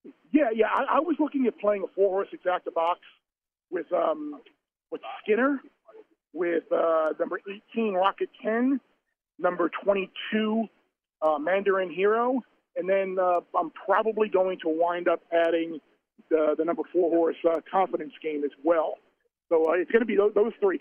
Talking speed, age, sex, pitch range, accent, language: 165 wpm, 40-59, male, 165-230 Hz, American, English